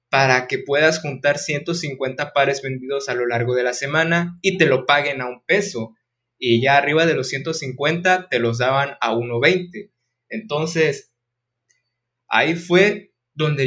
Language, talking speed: Spanish, 155 wpm